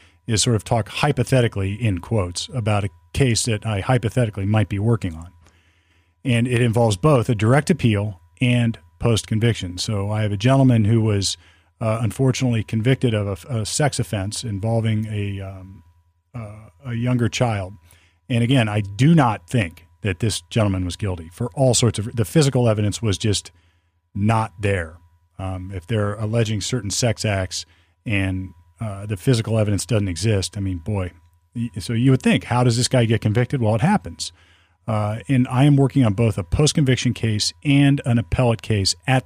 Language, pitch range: English, 95-120 Hz